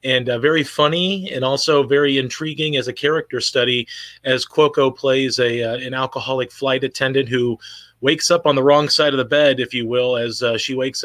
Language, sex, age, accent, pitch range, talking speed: English, male, 30-49, American, 120-135 Hz, 205 wpm